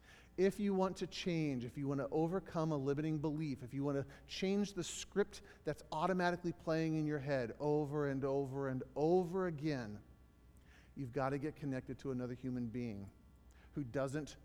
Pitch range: 130-185 Hz